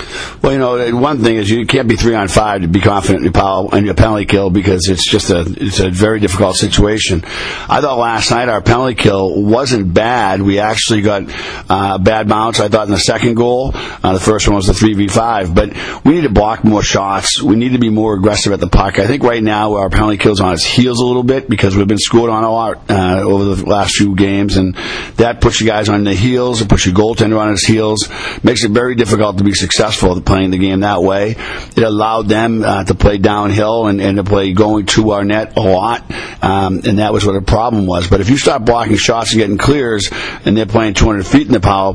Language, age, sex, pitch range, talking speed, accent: English, 50-69, male, 100-110 Hz, 240 wpm, American